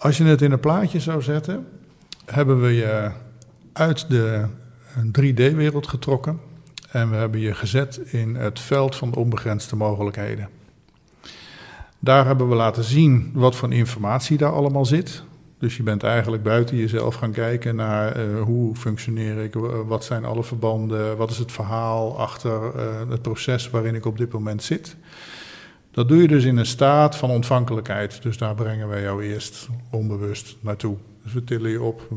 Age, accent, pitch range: 50-69, Dutch, 115-150 Hz